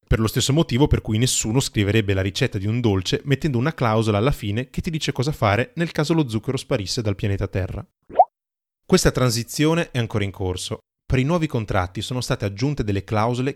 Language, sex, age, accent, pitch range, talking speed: Italian, male, 20-39, native, 100-130 Hz, 205 wpm